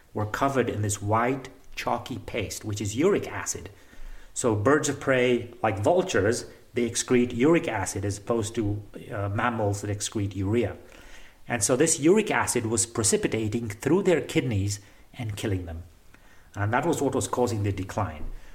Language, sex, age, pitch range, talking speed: English, male, 40-59, 105-140 Hz, 160 wpm